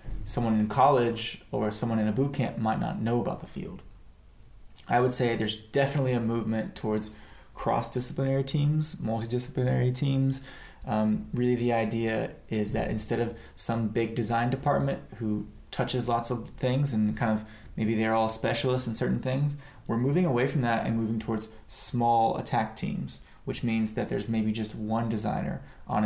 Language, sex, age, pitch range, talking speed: English, male, 20-39, 110-130 Hz, 170 wpm